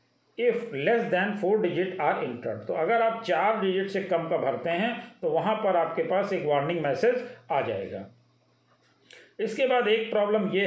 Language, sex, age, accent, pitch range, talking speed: Hindi, male, 50-69, native, 165-225 Hz, 175 wpm